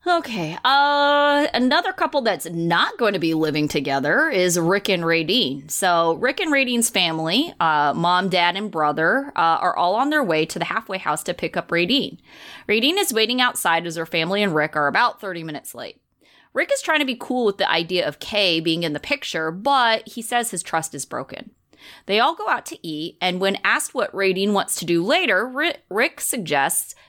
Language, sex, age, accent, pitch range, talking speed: English, female, 20-39, American, 170-270 Hz, 205 wpm